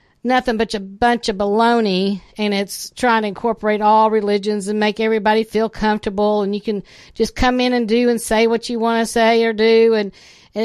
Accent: American